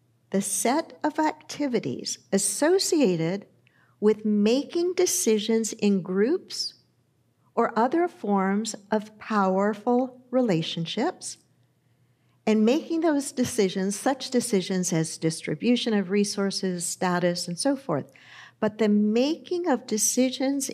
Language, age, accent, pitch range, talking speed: English, 50-69, American, 205-335 Hz, 100 wpm